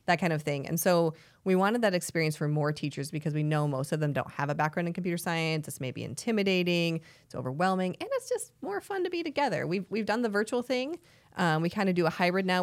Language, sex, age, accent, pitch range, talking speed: English, female, 20-39, American, 145-175 Hz, 250 wpm